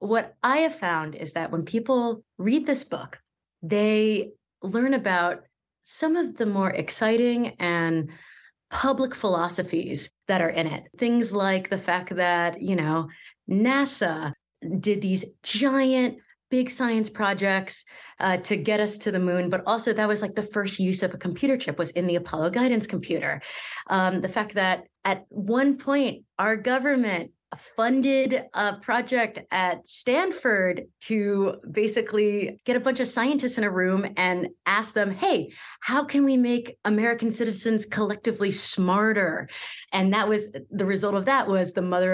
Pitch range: 185-235 Hz